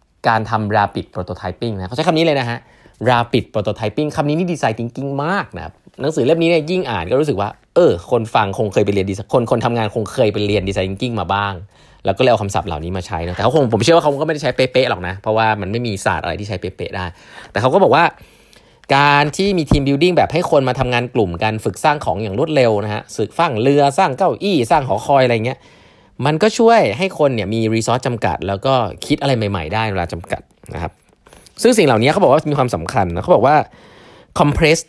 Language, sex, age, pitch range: Thai, male, 20-39, 100-140 Hz